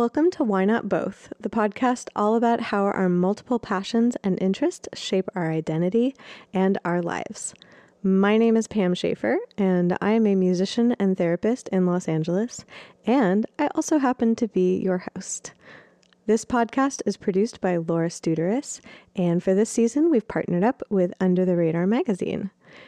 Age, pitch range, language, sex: 20-39, 180-230 Hz, English, female